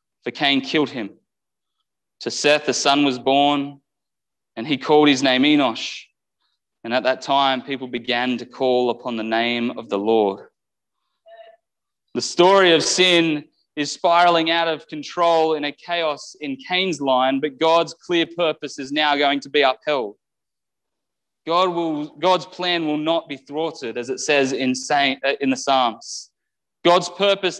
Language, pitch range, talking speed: English, 145-180 Hz, 160 wpm